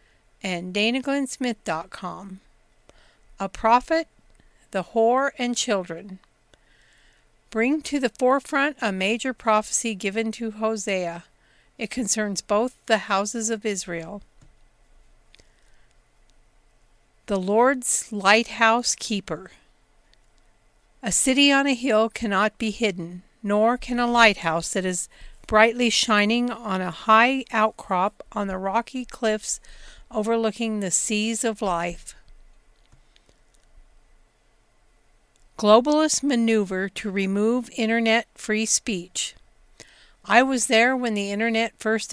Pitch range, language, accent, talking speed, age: 195-230 Hz, English, American, 105 wpm, 50-69